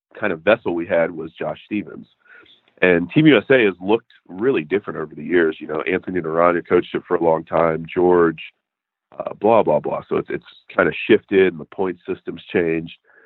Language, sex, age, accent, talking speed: English, male, 40-59, American, 200 wpm